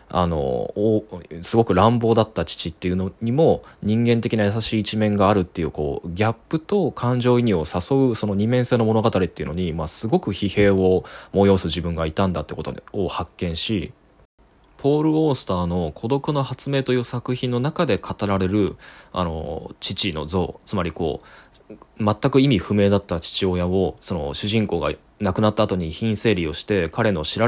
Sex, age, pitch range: male, 20-39, 90-125 Hz